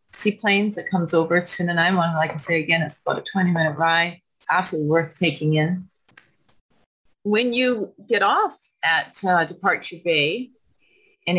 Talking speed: 165 wpm